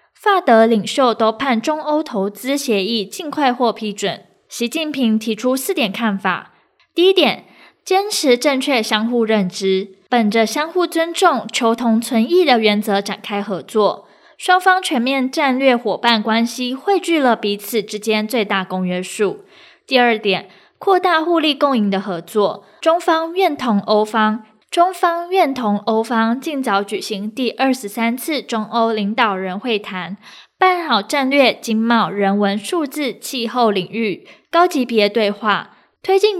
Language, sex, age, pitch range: Chinese, female, 10-29, 215-300 Hz